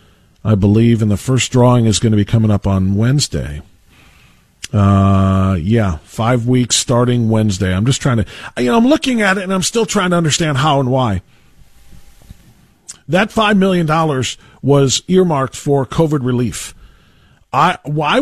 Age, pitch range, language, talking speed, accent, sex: 40-59, 115-170 Hz, English, 160 wpm, American, male